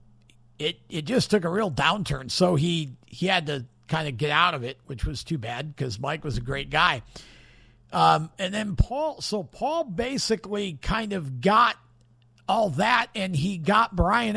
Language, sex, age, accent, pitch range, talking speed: English, male, 50-69, American, 130-215 Hz, 185 wpm